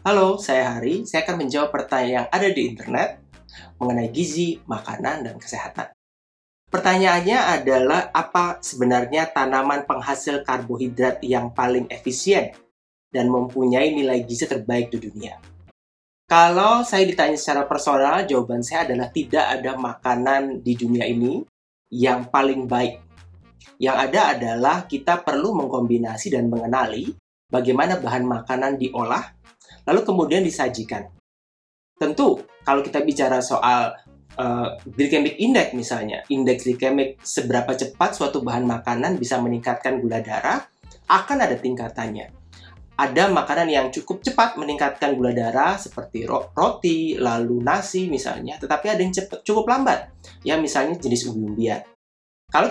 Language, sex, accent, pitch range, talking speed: Indonesian, male, native, 120-150 Hz, 130 wpm